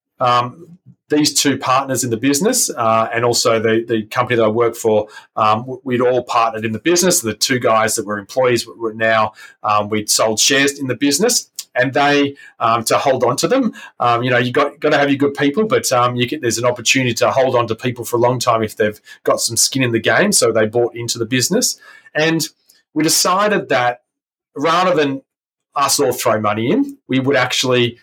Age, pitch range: 30-49, 110-145 Hz